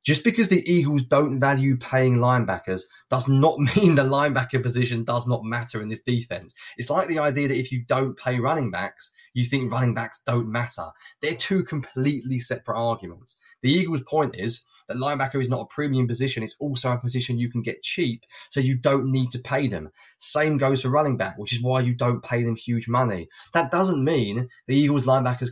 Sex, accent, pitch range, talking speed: male, British, 115-145 Hz, 205 wpm